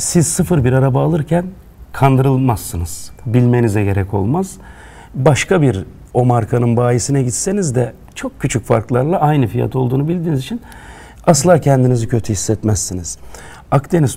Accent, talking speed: native, 125 wpm